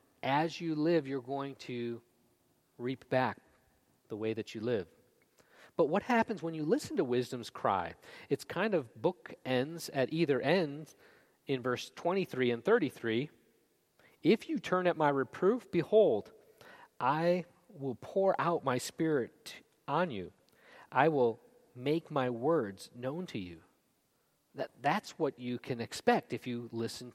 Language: English